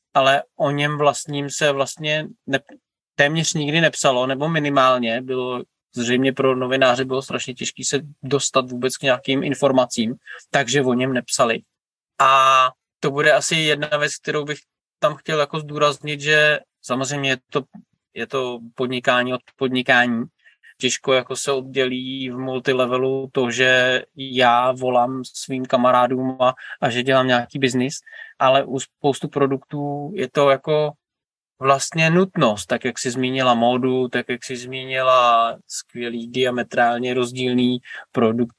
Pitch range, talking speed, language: 125-145 Hz, 135 wpm, Czech